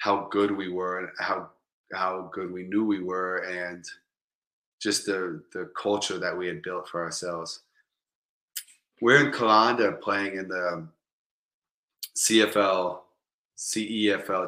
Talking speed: 130 wpm